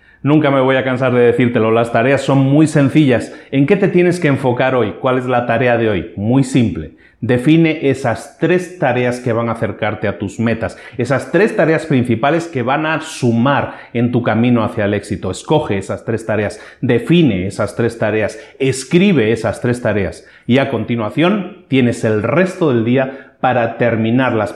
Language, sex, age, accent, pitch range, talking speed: Spanish, male, 40-59, Mexican, 115-145 Hz, 180 wpm